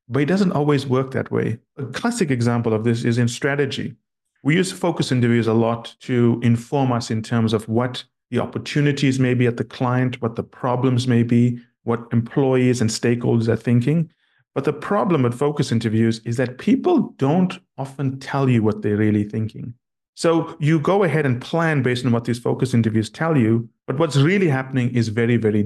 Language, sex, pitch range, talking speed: English, male, 115-140 Hz, 195 wpm